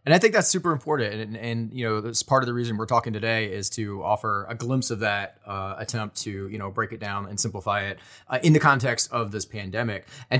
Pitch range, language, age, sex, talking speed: 105-130 Hz, English, 20-39, male, 260 wpm